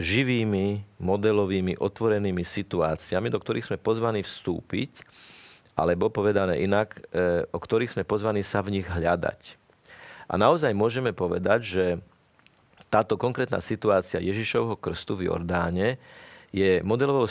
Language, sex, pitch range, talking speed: Slovak, male, 95-120 Hz, 120 wpm